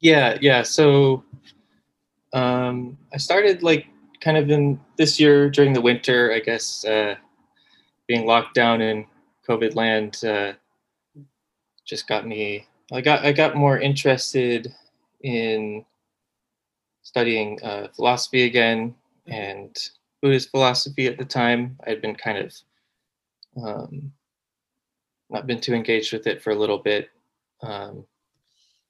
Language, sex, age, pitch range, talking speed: English, male, 20-39, 110-140 Hz, 130 wpm